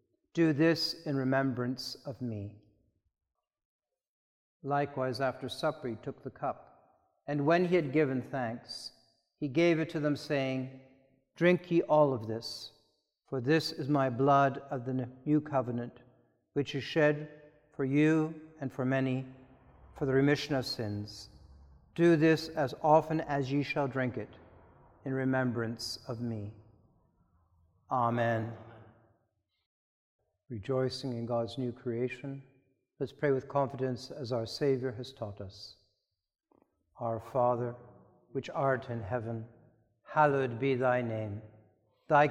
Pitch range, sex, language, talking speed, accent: 115-145 Hz, male, English, 130 wpm, American